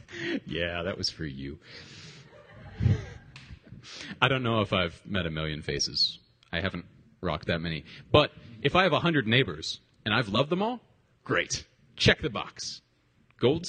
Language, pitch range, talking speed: English, 105-145 Hz, 160 wpm